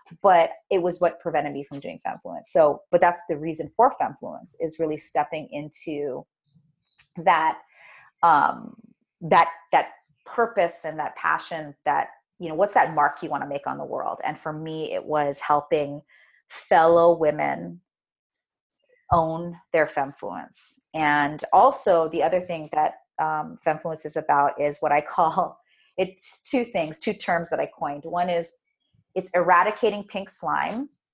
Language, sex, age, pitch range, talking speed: English, female, 30-49, 155-190 Hz, 155 wpm